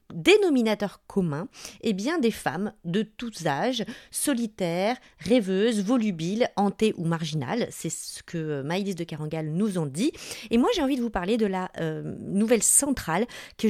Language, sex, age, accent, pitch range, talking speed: French, female, 30-49, French, 175-225 Hz, 160 wpm